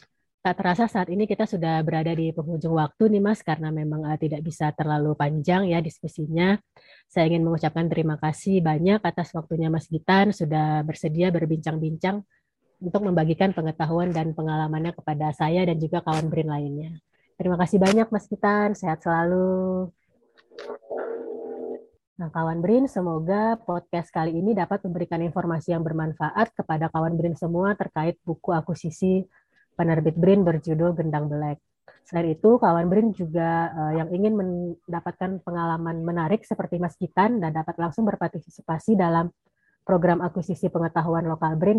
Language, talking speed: Indonesian, 140 wpm